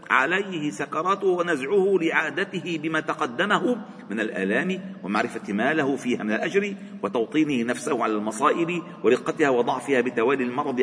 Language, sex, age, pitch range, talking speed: Arabic, male, 50-69, 155-200 Hz, 115 wpm